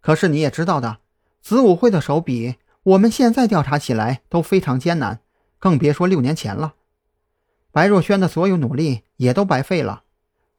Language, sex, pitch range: Chinese, male, 125-190 Hz